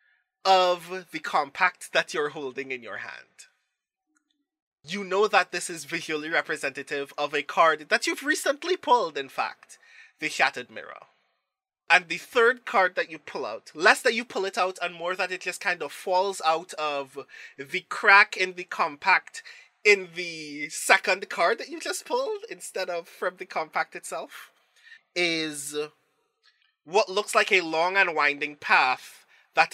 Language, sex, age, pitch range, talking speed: English, male, 20-39, 145-220 Hz, 165 wpm